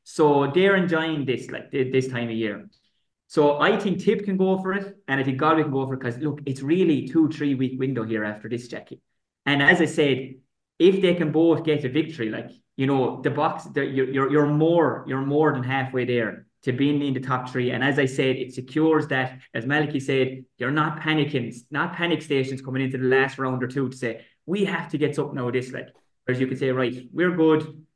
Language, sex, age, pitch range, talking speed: English, male, 20-39, 130-155 Hz, 240 wpm